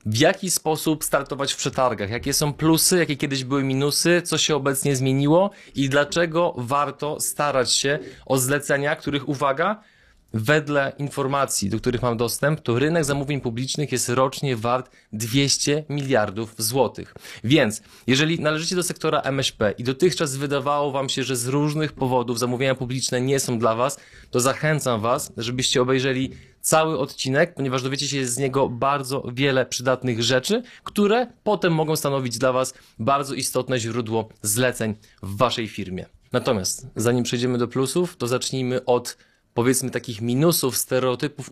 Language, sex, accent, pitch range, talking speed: Polish, male, native, 125-145 Hz, 150 wpm